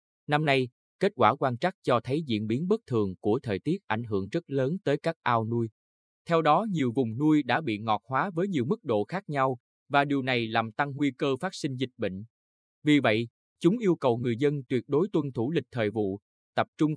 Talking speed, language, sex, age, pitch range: 230 wpm, Vietnamese, male, 20-39, 110-150 Hz